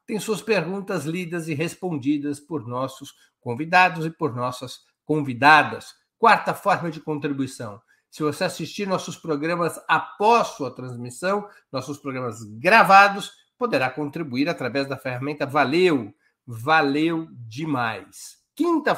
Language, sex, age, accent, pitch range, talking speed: Portuguese, male, 60-79, Brazilian, 135-175 Hz, 115 wpm